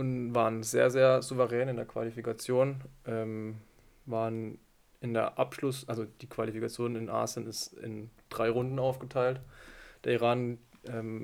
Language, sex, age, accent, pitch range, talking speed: German, male, 20-39, German, 115-130 Hz, 140 wpm